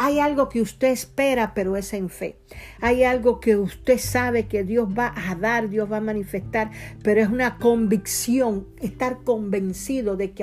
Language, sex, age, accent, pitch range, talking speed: Spanish, female, 50-69, American, 200-245 Hz, 180 wpm